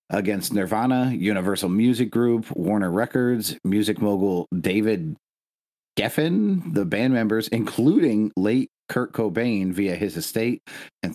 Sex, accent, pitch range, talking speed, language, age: male, American, 95-120 Hz, 120 wpm, English, 40-59